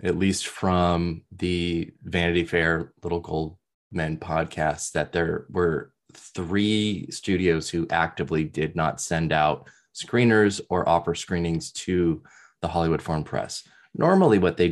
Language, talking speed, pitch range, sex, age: English, 135 wpm, 85-100 Hz, male, 20-39